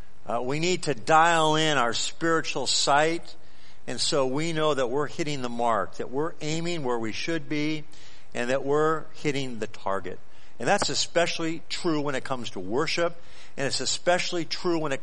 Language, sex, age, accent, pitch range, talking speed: English, male, 50-69, American, 115-160 Hz, 185 wpm